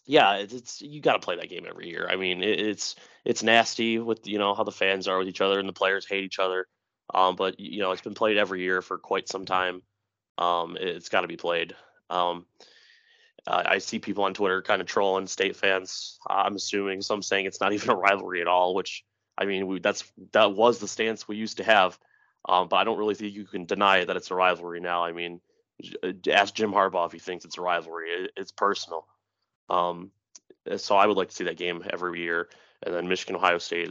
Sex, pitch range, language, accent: male, 90-110 Hz, English, American